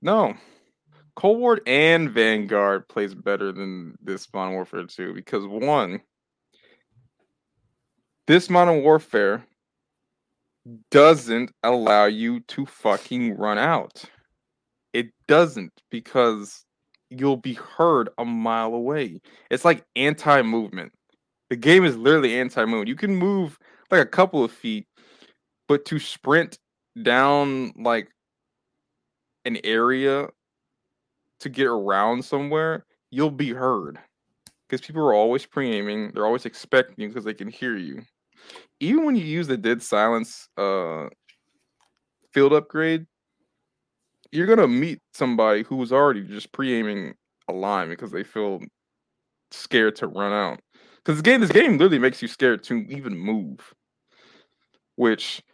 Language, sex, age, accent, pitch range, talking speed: English, male, 20-39, American, 110-155 Hz, 125 wpm